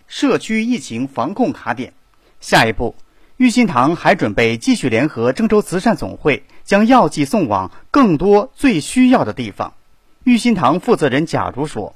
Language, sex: Chinese, male